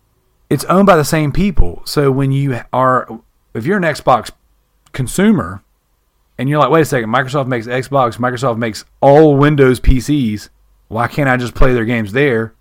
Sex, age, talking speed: male, 40-59, 175 wpm